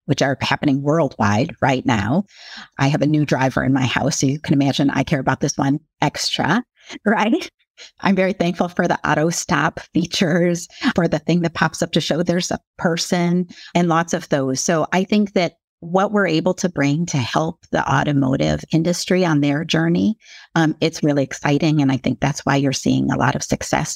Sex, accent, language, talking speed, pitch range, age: female, American, English, 200 wpm, 135-175 Hz, 40-59